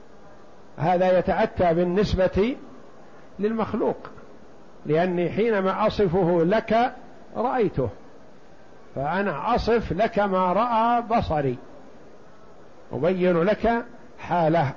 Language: Arabic